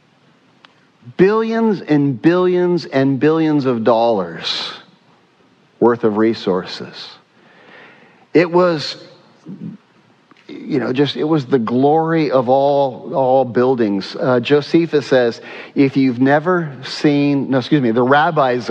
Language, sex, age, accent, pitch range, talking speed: English, male, 40-59, American, 120-155 Hz, 110 wpm